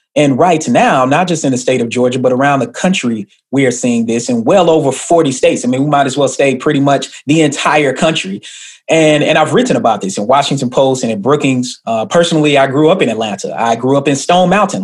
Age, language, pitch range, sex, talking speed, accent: 30-49, English, 125-175 Hz, male, 245 wpm, American